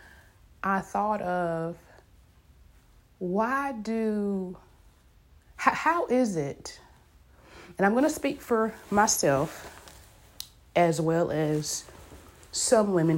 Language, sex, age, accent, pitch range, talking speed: English, female, 30-49, American, 145-190 Hz, 95 wpm